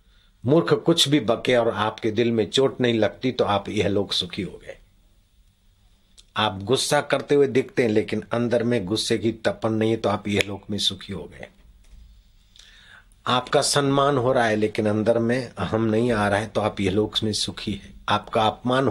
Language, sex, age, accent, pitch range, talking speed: Hindi, male, 50-69, native, 100-125 Hz, 195 wpm